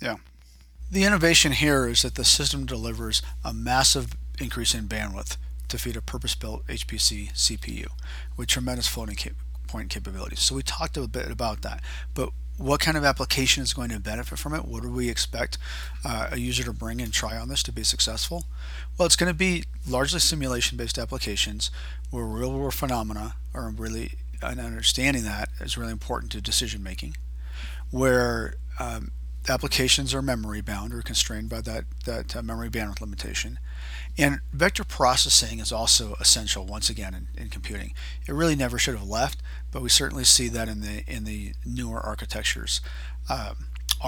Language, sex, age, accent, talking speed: English, male, 40-59, American, 170 wpm